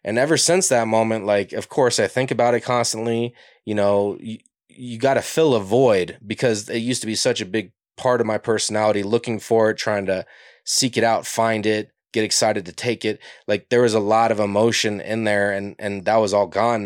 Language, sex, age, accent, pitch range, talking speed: English, male, 20-39, American, 105-130 Hz, 230 wpm